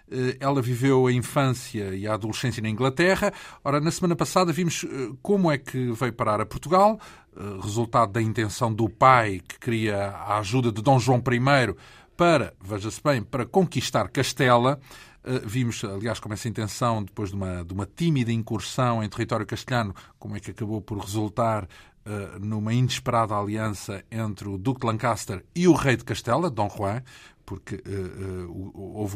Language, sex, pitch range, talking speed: Spanish, male, 105-135 Hz, 165 wpm